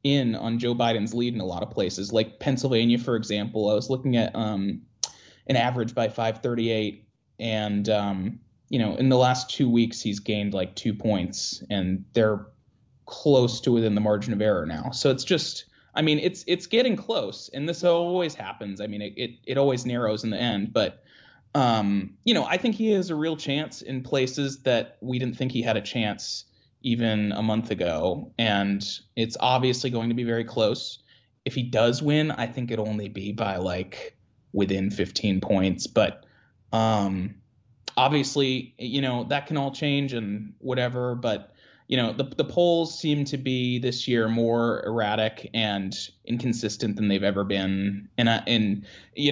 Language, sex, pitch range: English, male, 105-130 Hz